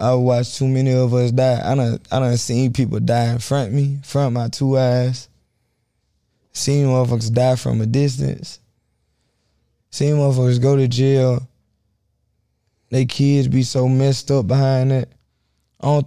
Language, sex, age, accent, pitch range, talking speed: English, male, 20-39, American, 120-135 Hz, 165 wpm